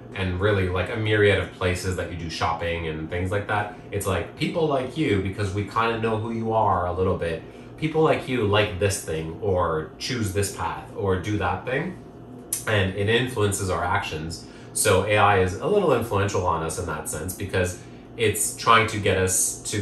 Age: 30-49